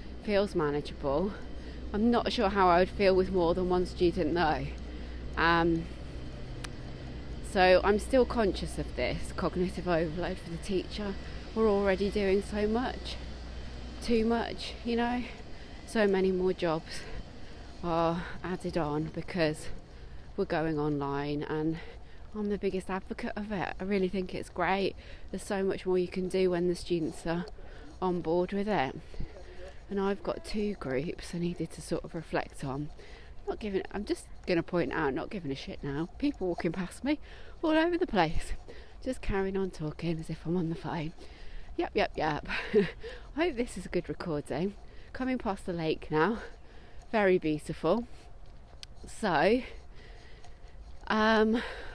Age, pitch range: 30-49, 160-205 Hz